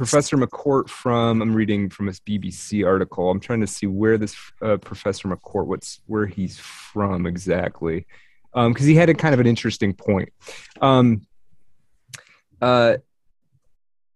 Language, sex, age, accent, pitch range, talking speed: English, male, 30-49, American, 100-125 Hz, 150 wpm